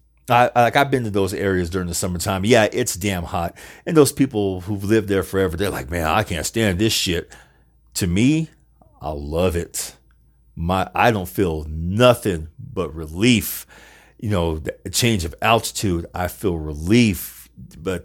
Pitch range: 90-115 Hz